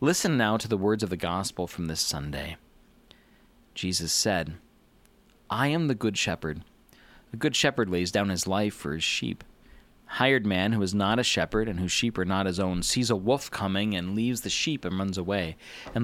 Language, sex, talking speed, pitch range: English, male, 205 wpm, 90-110 Hz